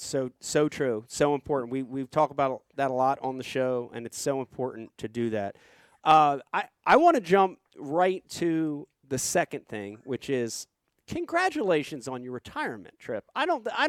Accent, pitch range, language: American, 130-195 Hz, English